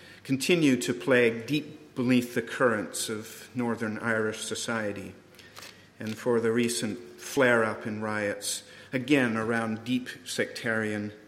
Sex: male